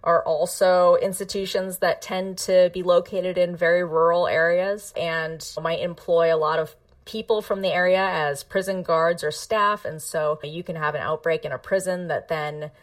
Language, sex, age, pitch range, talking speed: English, female, 30-49, 165-195 Hz, 185 wpm